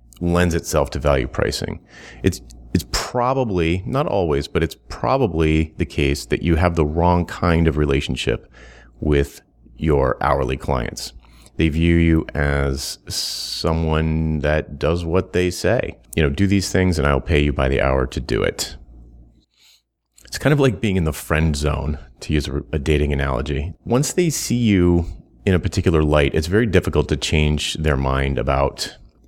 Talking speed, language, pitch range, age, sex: 170 wpm, English, 70-90 Hz, 30-49, male